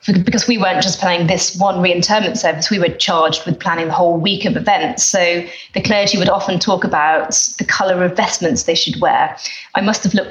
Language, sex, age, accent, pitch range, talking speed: English, female, 30-49, British, 175-215 Hz, 215 wpm